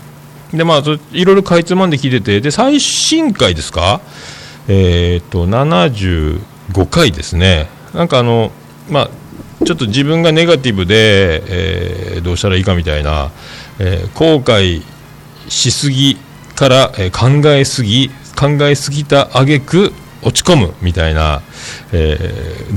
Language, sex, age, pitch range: Japanese, male, 40-59, 95-150 Hz